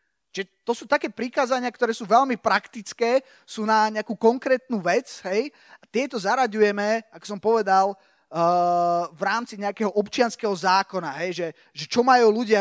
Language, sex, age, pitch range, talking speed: Slovak, male, 20-39, 185-235 Hz, 155 wpm